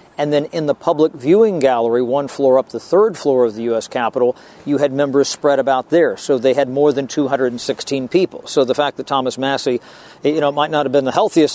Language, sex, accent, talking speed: English, male, American, 230 wpm